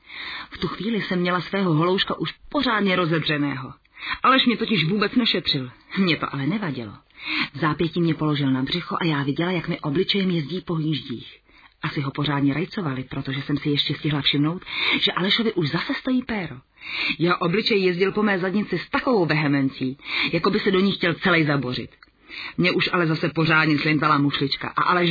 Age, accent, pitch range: 40-59, native, 155-205 Hz